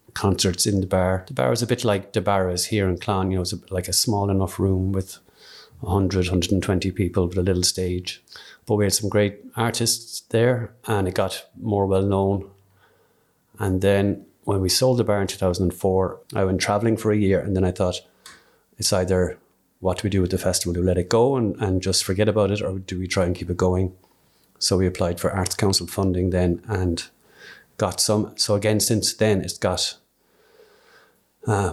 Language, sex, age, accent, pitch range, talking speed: English, male, 30-49, Irish, 95-105 Hz, 210 wpm